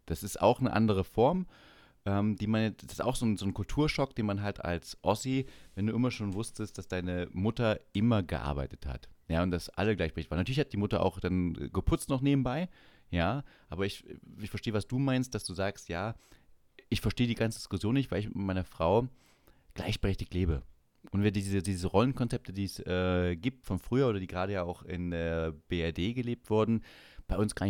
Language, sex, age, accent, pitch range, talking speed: German, male, 30-49, German, 85-110 Hz, 210 wpm